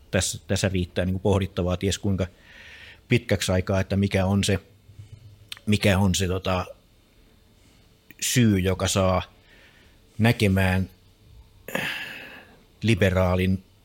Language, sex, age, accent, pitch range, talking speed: Finnish, male, 60-79, native, 90-105 Hz, 90 wpm